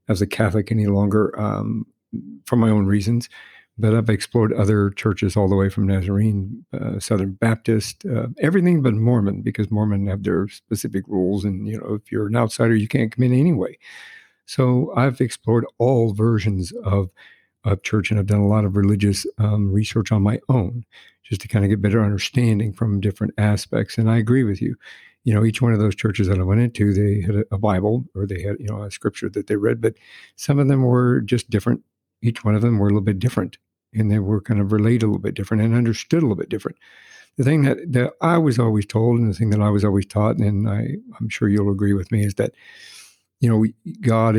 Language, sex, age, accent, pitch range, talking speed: English, male, 60-79, American, 105-115 Hz, 225 wpm